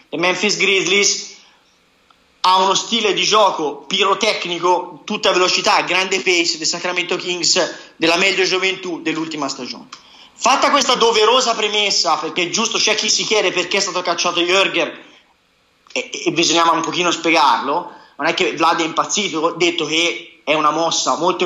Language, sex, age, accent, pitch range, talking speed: Italian, male, 30-49, native, 165-205 Hz, 150 wpm